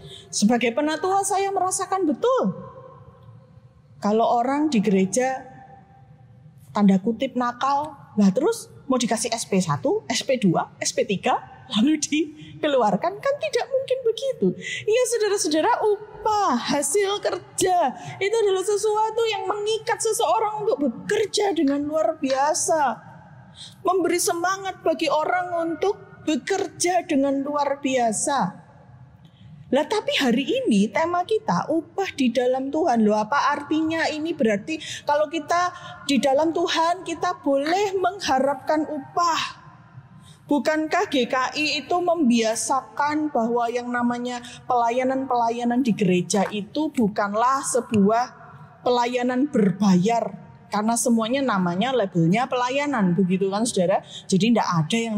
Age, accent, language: 30-49, native, Indonesian